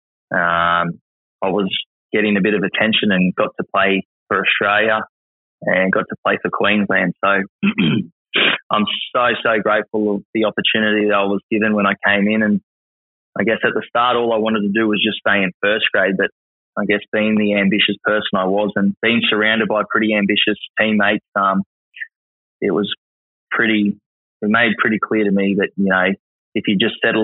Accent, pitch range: Australian, 95-110 Hz